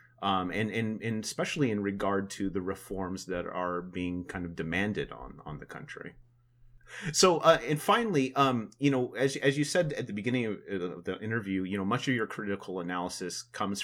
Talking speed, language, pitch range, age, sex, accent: 195 wpm, English, 90-115 Hz, 30-49, male, American